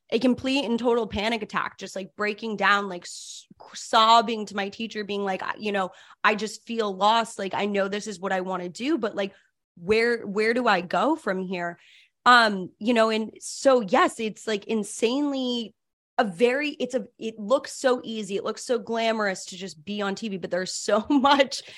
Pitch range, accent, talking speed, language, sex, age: 195-245 Hz, American, 200 wpm, English, female, 20-39